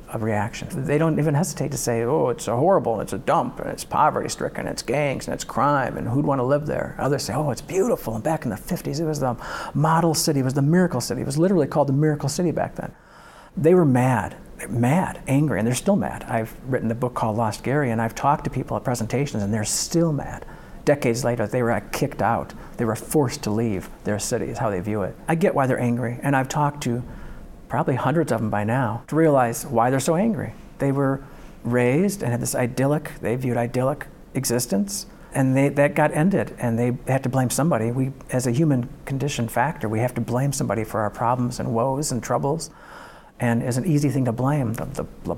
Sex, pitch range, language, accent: male, 120-150 Hz, English, American